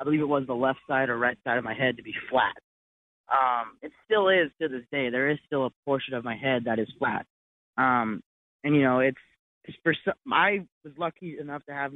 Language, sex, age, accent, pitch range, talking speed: English, male, 20-39, American, 125-155 Hz, 235 wpm